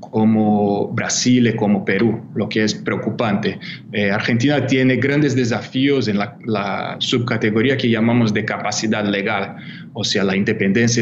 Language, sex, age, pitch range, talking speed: Spanish, male, 20-39, 110-130 Hz, 145 wpm